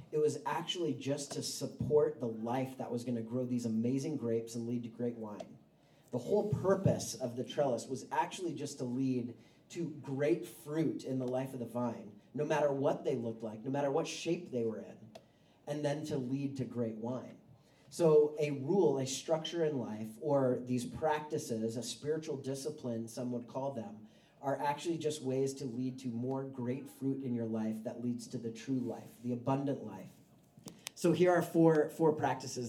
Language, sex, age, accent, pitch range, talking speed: English, male, 30-49, American, 120-150 Hz, 195 wpm